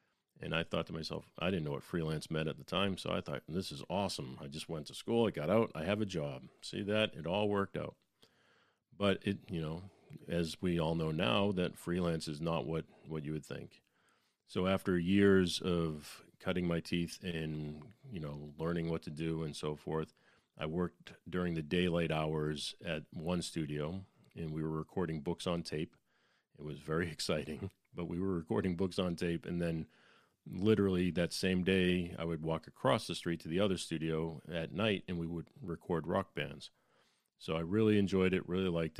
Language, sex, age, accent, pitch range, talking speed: English, male, 40-59, American, 80-90 Hz, 200 wpm